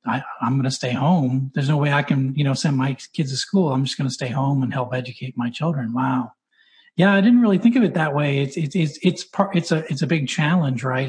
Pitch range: 130-165 Hz